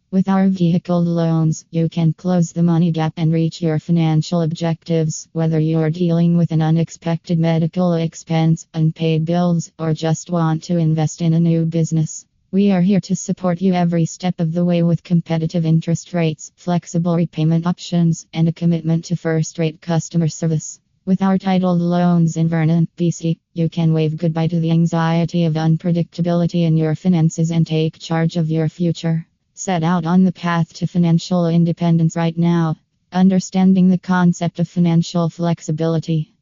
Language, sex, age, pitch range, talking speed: English, female, 20-39, 165-175 Hz, 165 wpm